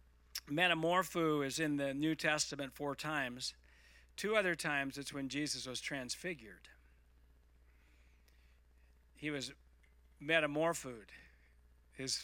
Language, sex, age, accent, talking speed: English, male, 50-69, American, 100 wpm